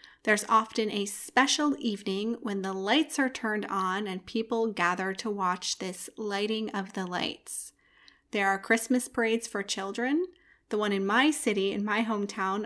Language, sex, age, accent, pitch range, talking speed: English, female, 30-49, American, 195-250 Hz, 165 wpm